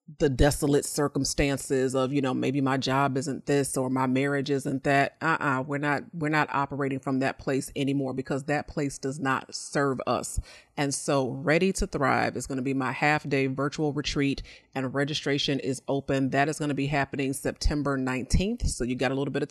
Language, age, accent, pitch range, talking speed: English, 30-49, American, 135-150 Hz, 205 wpm